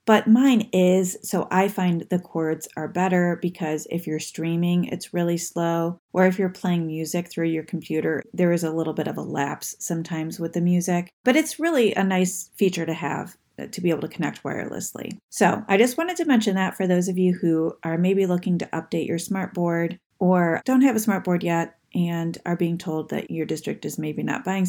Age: 30-49